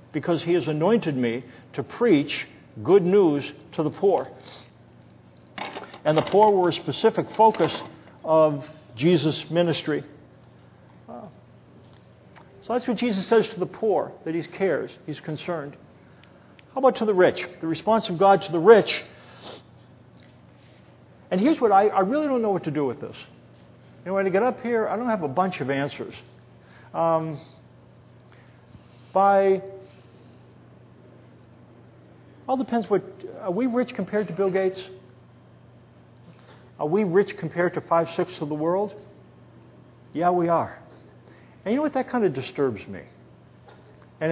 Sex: male